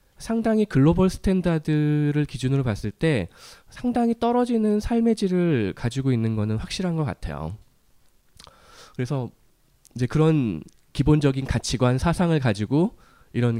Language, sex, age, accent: Korean, male, 20-39, native